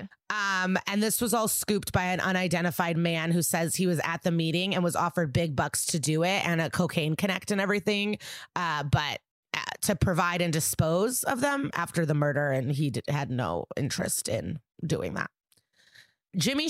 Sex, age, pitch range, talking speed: female, 30-49, 165-195 Hz, 185 wpm